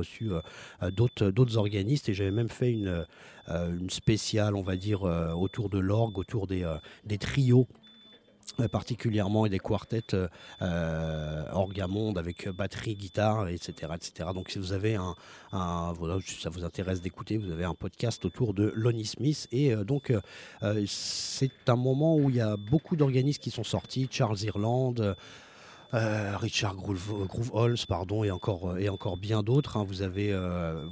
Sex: male